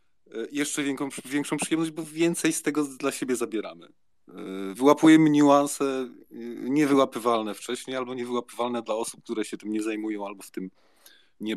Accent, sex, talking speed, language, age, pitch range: native, male, 140 wpm, Polish, 40-59, 105-140 Hz